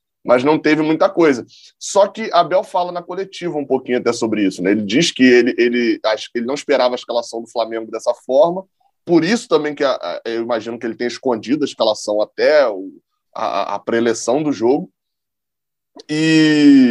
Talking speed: 180 wpm